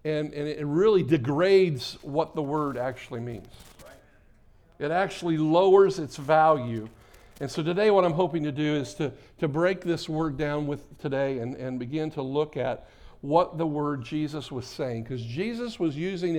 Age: 50-69